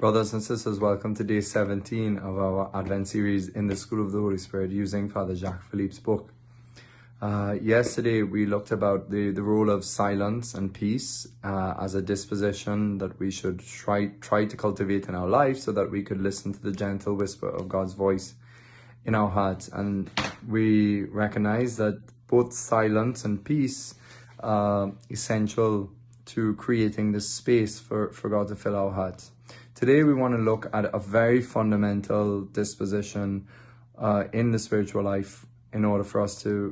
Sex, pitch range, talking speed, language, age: male, 100-115 Hz, 175 wpm, English, 20-39